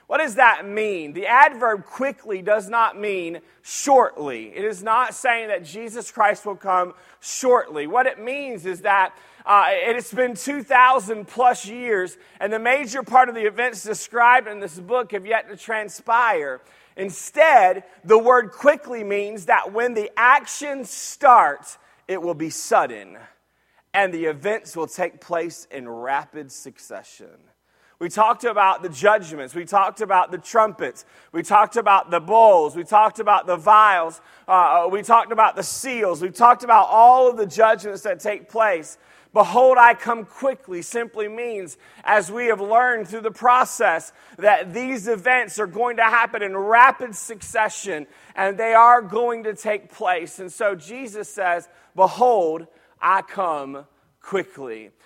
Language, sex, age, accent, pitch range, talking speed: English, male, 30-49, American, 185-240 Hz, 160 wpm